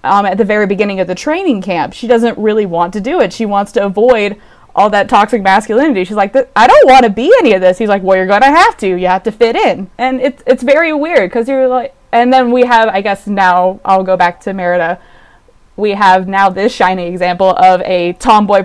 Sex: female